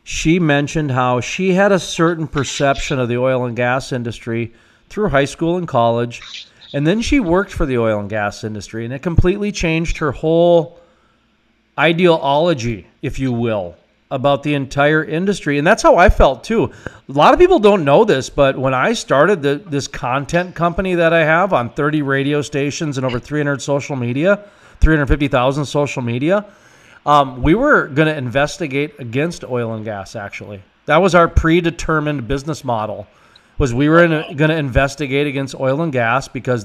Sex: male